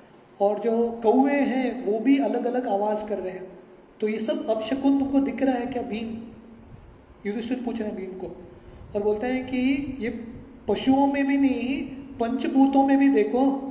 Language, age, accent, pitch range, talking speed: English, 20-39, Indian, 210-270 Hz, 165 wpm